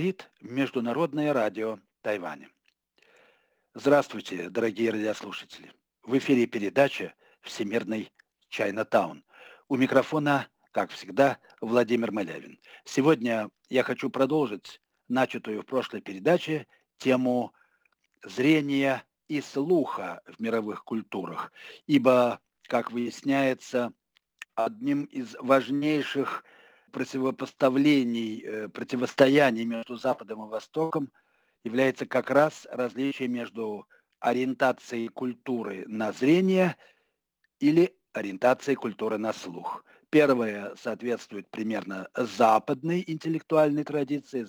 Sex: male